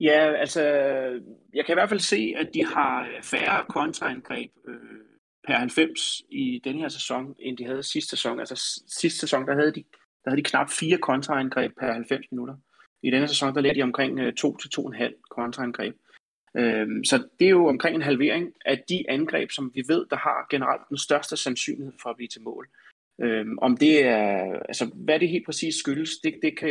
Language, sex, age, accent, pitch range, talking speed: Danish, male, 30-49, native, 125-155 Hz, 200 wpm